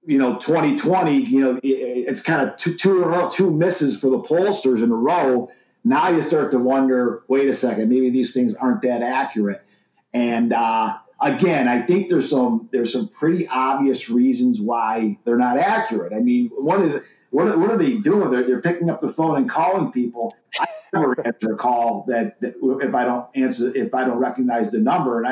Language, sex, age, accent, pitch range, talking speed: English, male, 50-69, American, 125-180 Hz, 205 wpm